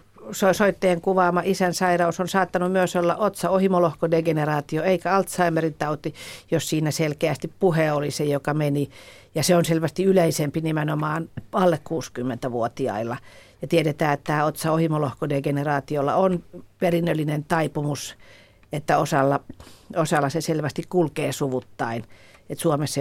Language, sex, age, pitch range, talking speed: Finnish, female, 50-69, 140-170 Hz, 115 wpm